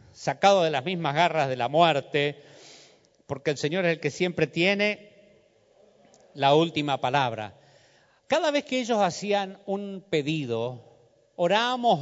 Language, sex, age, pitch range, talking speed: Spanish, male, 40-59, 140-205 Hz, 135 wpm